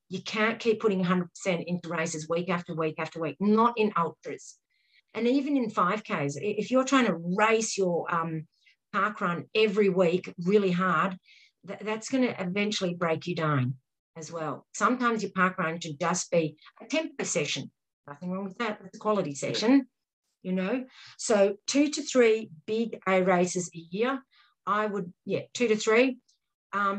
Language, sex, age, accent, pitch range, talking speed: English, female, 50-69, Australian, 175-225 Hz, 170 wpm